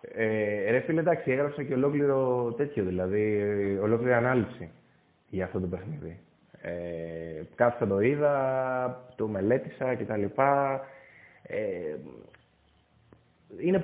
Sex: male